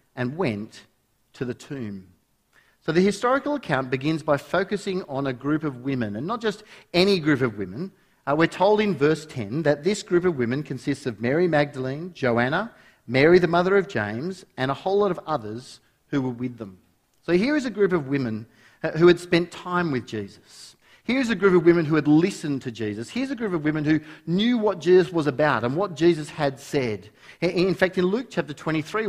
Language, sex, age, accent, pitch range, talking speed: English, male, 40-59, Australian, 130-185 Hz, 205 wpm